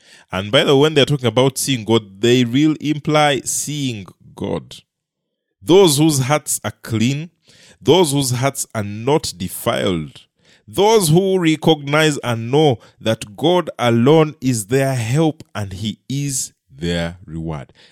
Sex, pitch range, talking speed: male, 115-155 Hz, 140 wpm